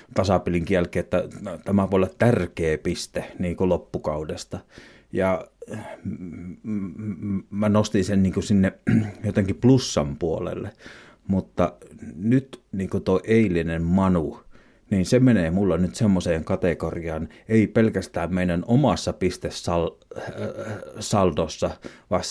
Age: 30-49